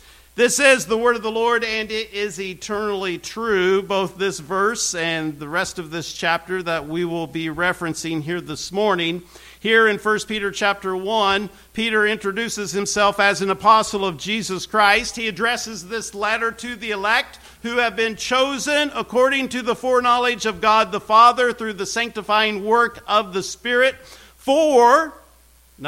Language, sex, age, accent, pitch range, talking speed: English, male, 50-69, American, 190-240 Hz, 165 wpm